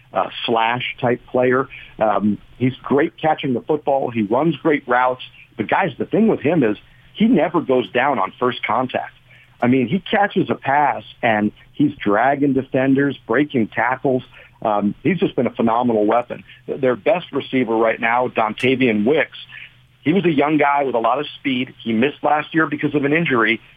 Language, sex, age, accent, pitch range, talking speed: English, male, 50-69, American, 120-145 Hz, 180 wpm